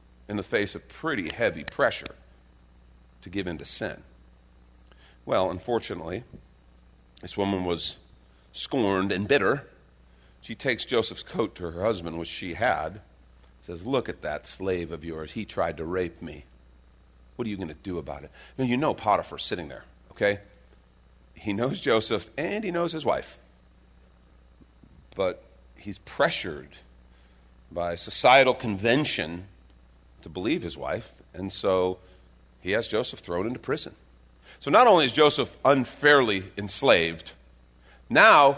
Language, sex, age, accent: English, male, 40-59, American